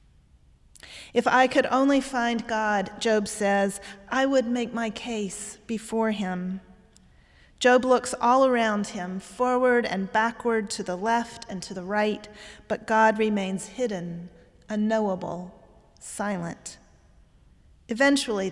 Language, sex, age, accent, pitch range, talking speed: English, female, 40-59, American, 190-230 Hz, 120 wpm